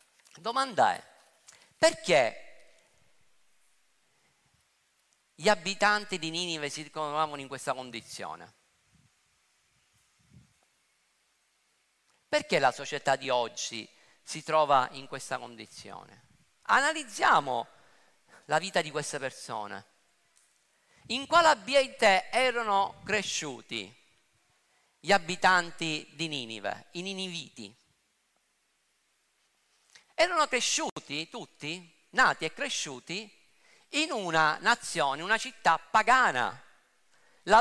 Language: Italian